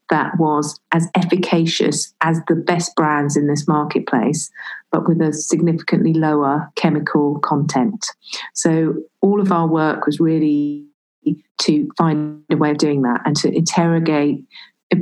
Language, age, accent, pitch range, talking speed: English, 40-59, British, 150-170 Hz, 140 wpm